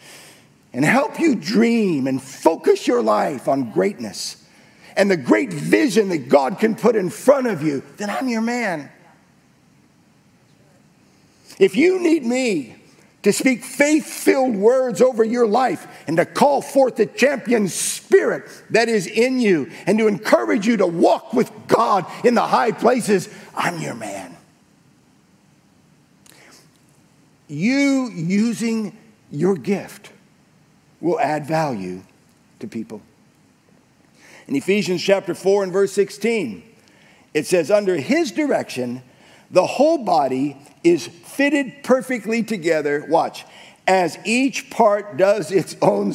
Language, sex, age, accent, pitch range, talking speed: English, male, 50-69, American, 175-240 Hz, 125 wpm